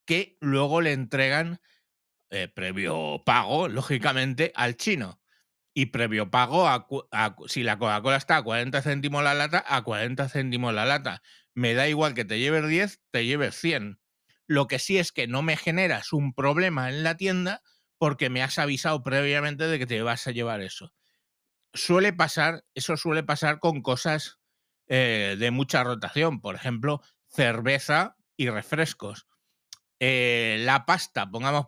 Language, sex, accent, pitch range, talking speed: Spanish, male, Spanish, 125-155 Hz, 160 wpm